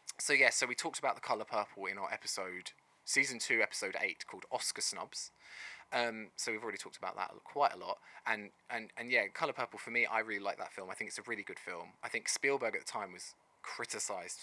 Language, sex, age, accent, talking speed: English, male, 20-39, British, 235 wpm